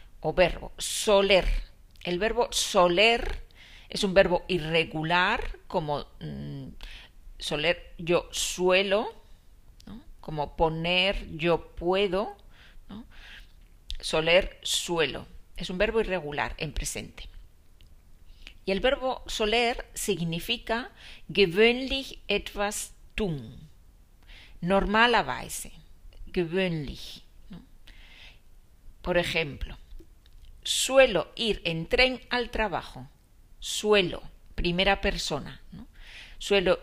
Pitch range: 155-215 Hz